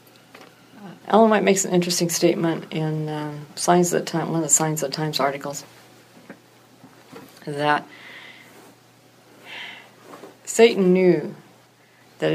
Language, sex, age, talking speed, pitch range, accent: English, female, 50-69, 115 wpm, 155-195 Hz, American